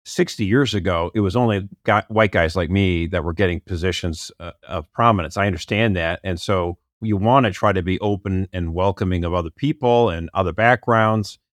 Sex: male